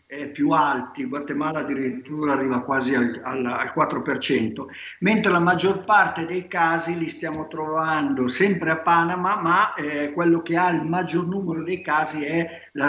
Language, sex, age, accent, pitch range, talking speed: Italian, male, 50-69, native, 150-190 Hz, 160 wpm